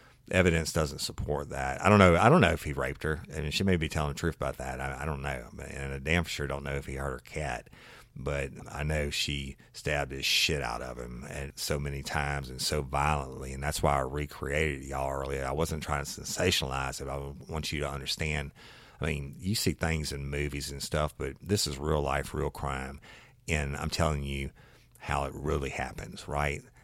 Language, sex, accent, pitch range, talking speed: English, male, American, 70-80 Hz, 225 wpm